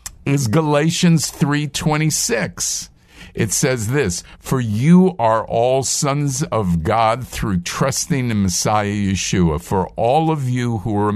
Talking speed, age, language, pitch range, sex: 130 wpm, 50-69, English, 110-165 Hz, male